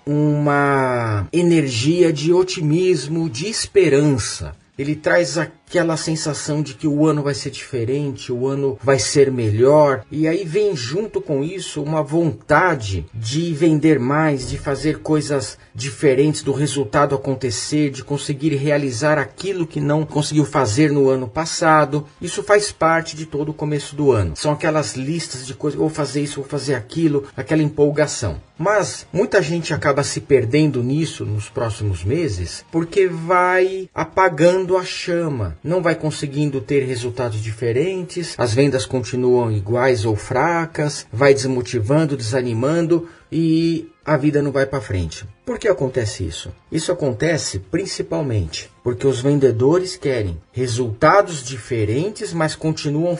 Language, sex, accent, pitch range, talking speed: Portuguese, male, Brazilian, 130-165 Hz, 140 wpm